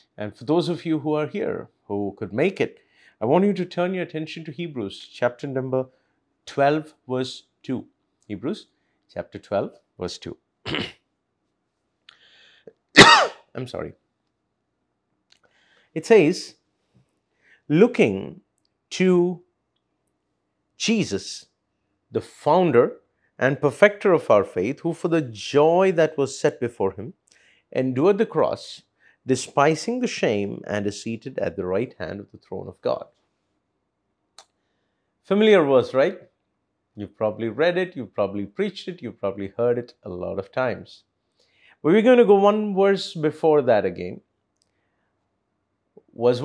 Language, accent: Malayalam, native